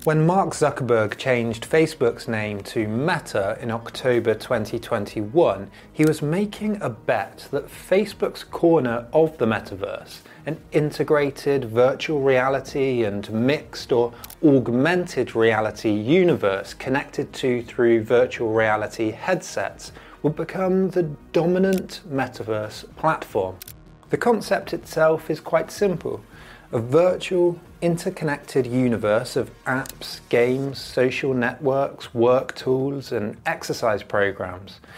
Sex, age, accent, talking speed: male, 30-49, British, 110 wpm